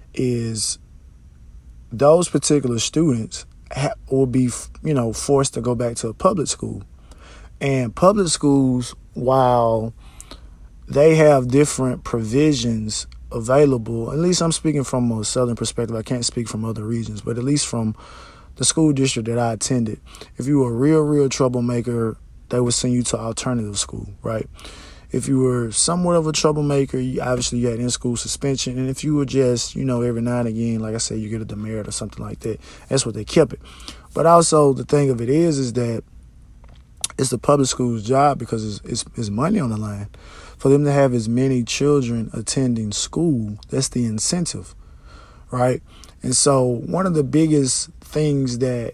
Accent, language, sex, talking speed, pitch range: American, English, male, 180 wpm, 110-140 Hz